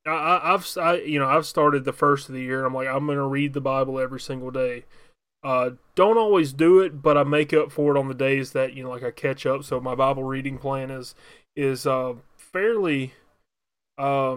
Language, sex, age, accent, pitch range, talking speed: English, male, 20-39, American, 135-155 Hz, 225 wpm